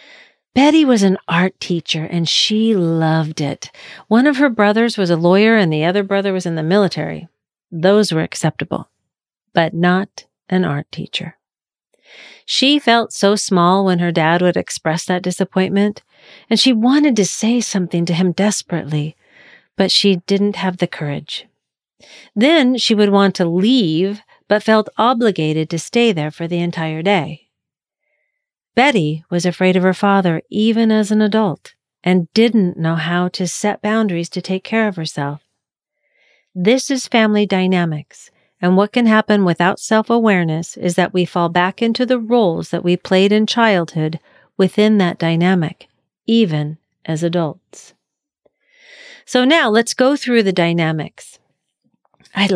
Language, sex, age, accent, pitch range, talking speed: English, female, 40-59, American, 170-220 Hz, 150 wpm